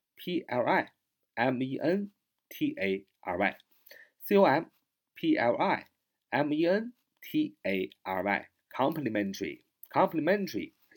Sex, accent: male, native